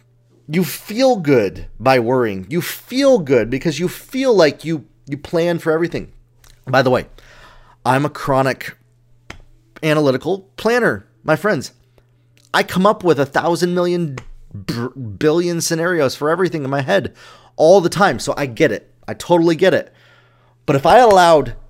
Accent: American